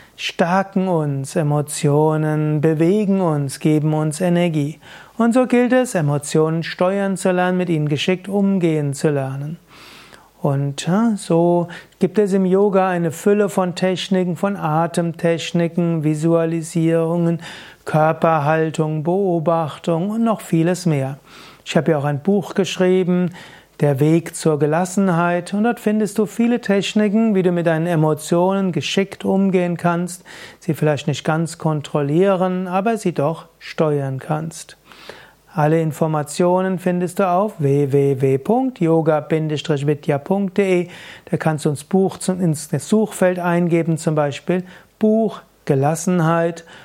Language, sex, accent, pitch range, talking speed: German, male, German, 155-185 Hz, 120 wpm